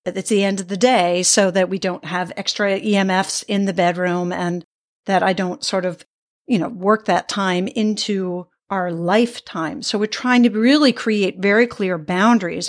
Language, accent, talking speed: English, American, 185 wpm